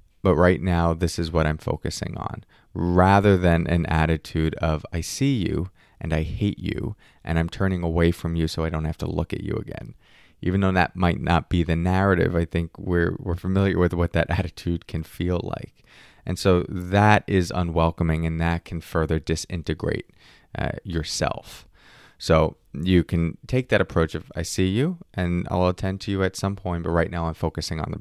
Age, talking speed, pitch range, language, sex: 30-49, 200 wpm, 80-95 Hz, English, male